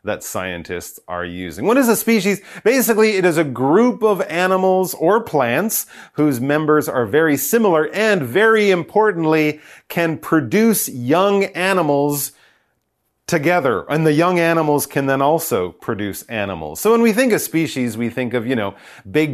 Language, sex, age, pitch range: Chinese, male, 40-59, 115-170 Hz